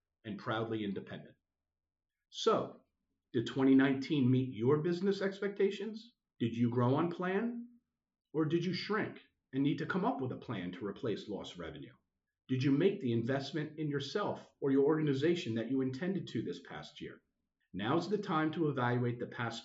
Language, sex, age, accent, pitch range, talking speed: English, male, 50-69, American, 115-165 Hz, 170 wpm